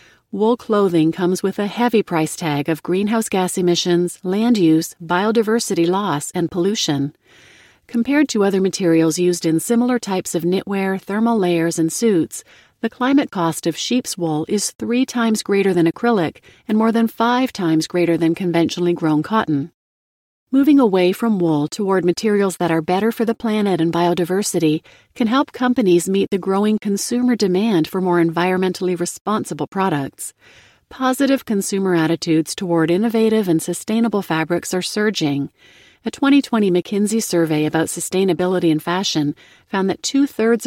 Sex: female